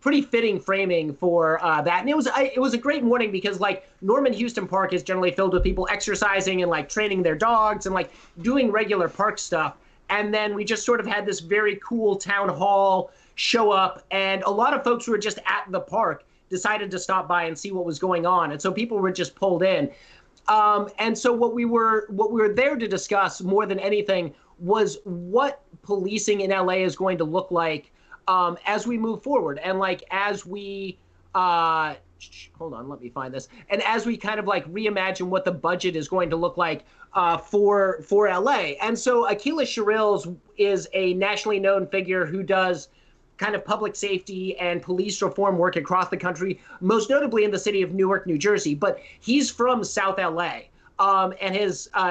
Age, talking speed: 30-49, 205 wpm